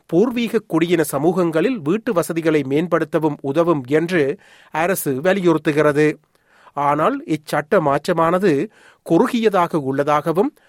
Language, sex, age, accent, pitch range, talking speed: Tamil, male, 30-49, native, 145-185 Hz, 85 wpm